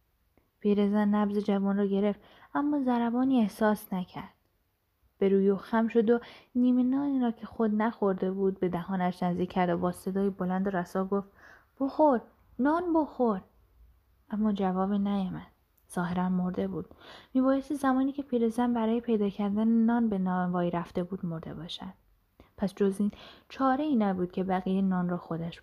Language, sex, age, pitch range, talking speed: Persian, female, 10-29, 185-235 Hz, 155 wpm